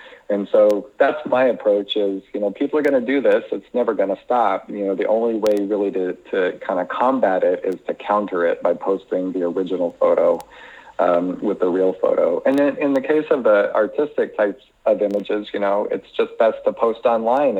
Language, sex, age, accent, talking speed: English, male, 40-59, American, 215 wpm